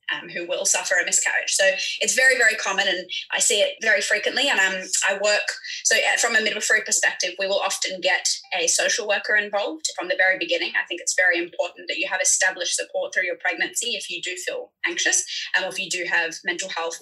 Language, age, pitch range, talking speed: English, 20-39, 180-285 Hz, 225 wpm